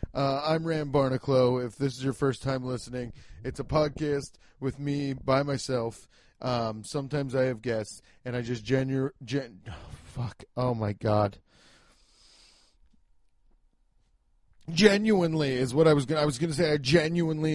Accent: American